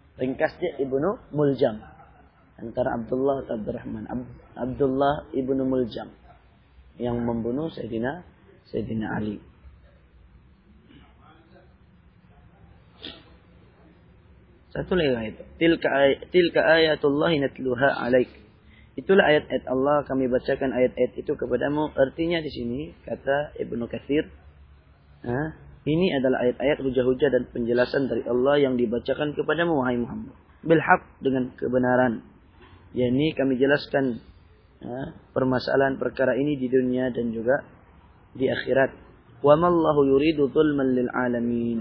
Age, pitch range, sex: 30-49, 120-145 Hz, male